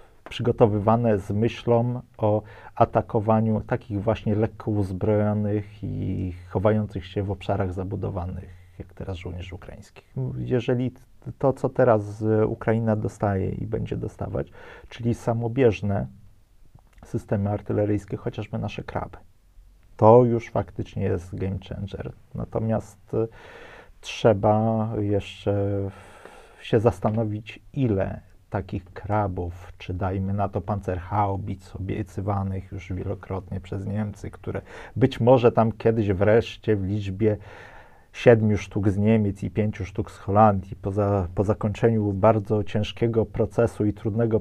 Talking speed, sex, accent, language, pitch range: 115 wpm, male, native, Polish, 95-110 Hz